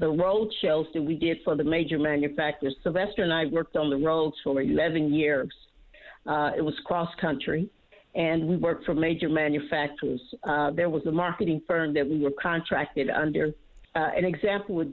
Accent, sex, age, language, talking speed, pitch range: American, female, 50-69, English, 180 wpm, 155-200 Hz